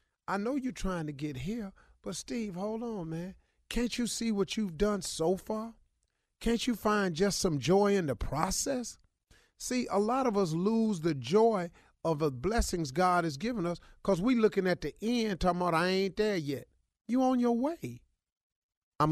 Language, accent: English, American